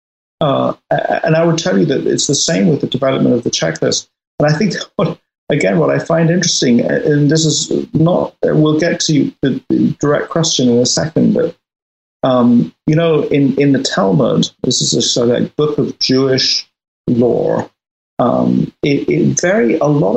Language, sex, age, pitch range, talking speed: English, male, 50-69, 120-165 Hz, 180 wpm